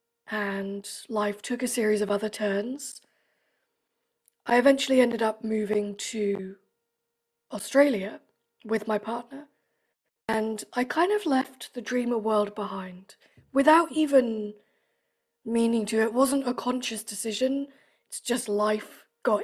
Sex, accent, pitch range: female, British, 210-260 Hz